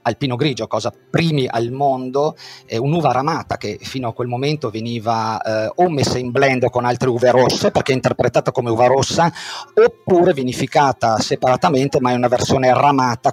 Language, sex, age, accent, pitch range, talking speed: Italian, male, 40-59, native, 125-150 Hz, 175 wpm